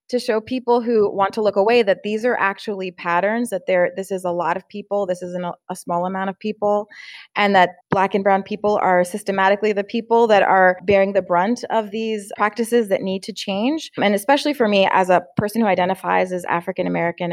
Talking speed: 215 wpm